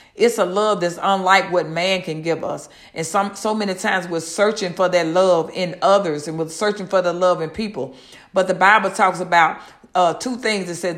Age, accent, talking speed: 50-69, American, 215 wpm